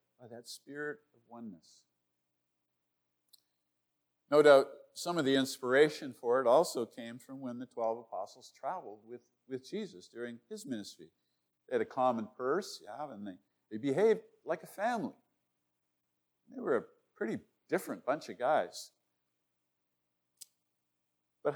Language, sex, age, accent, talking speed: English, male, 50-69, American, 135 wpm